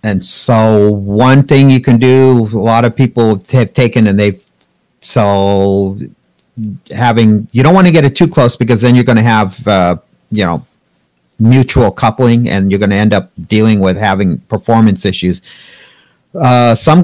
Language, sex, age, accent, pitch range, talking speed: English, male, 50-69, American, 105-130 Hz, 175 wpm